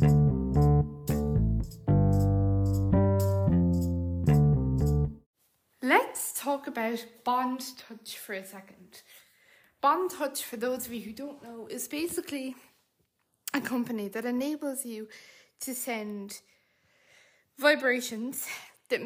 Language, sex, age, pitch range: English, female, 20-39, 190-260 Hz